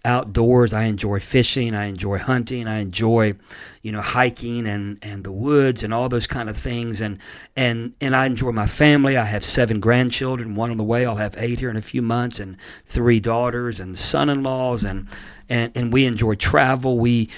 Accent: American